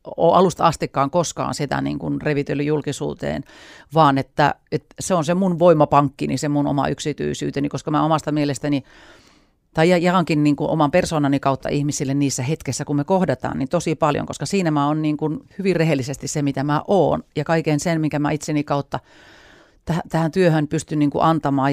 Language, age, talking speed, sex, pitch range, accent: Finnish, 40-59, 175 wpm, female, 145-170 Hz, native